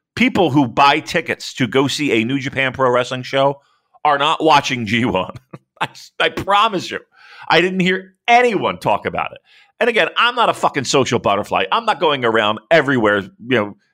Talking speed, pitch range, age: 185 wpm, 125-175 Hz, 40-59